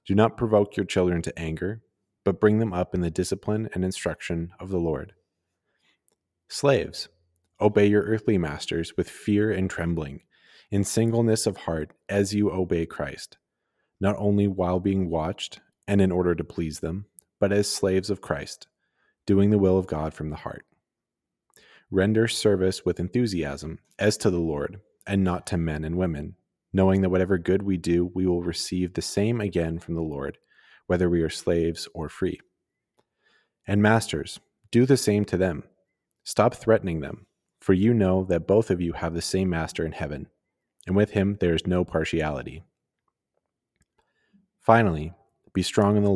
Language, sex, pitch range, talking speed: English, male, 85-100 Hz, 170 wpm